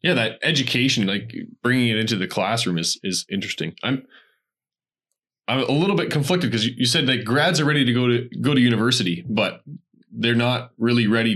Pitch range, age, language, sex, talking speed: 105-125 Hz, 20-39, English, male, 195 wpm